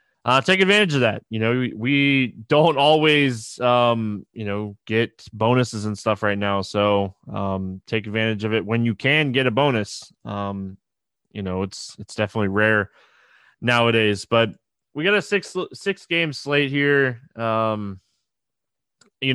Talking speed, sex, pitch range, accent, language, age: 155 wpm, male, 105-130 Hz, American, English, 20-39